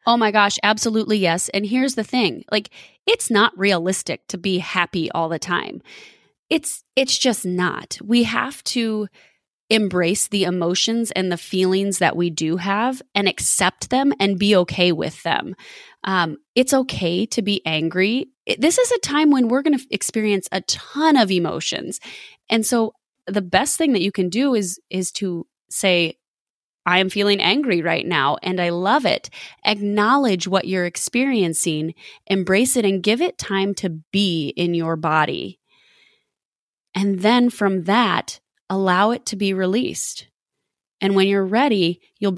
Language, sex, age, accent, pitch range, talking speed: English, female, 20-39, American, 175-235 Hz, 165 wpm